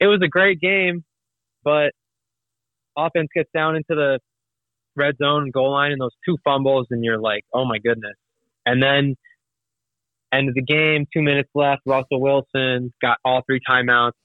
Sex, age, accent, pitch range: male, 20-39, American, 115-145 Hz